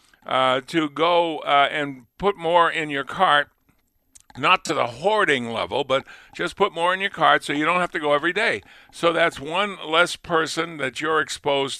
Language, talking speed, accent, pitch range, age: English, 195 wpm, American, 130-165 Hz, 50-69